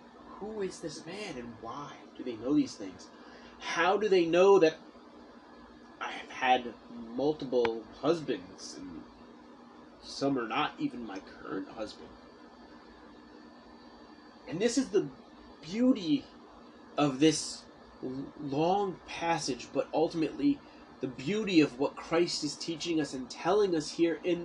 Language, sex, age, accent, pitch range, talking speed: English, male, 30-49, American, 145-220 Hz, 130 wpm